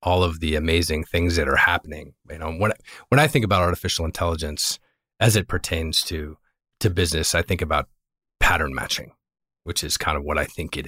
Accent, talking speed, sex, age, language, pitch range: American, 200 wpm, male, 40-59, English, 80-90 Hz